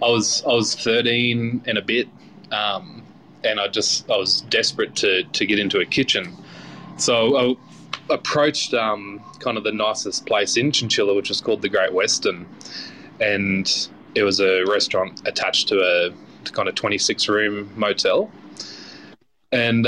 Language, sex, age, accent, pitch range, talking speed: English, male, 20-39, Australian, 100-115 Hz, 155 wpm